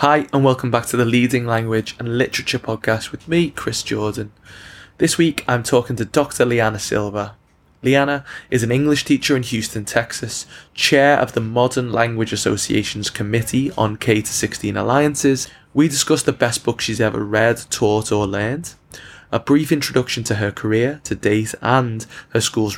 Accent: British